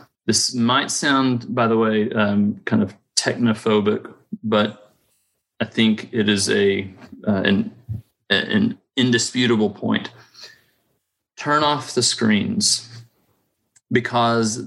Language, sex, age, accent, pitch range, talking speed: English, male, 30-49, American, 105-125 Hz, 105 wpm